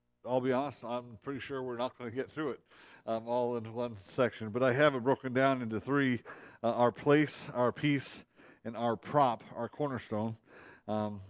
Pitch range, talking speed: 105-130 Hz, 195 wpm